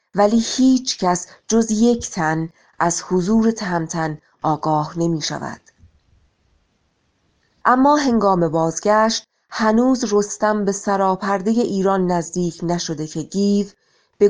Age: 30-49